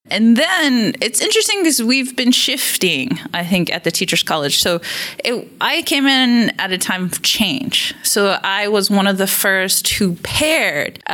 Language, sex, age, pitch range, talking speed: English, female, 20-39, 165-215 Hz, 180 wpm